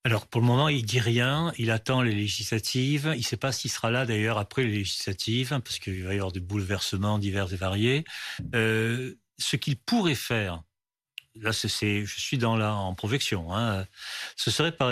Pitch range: 115-145 Hz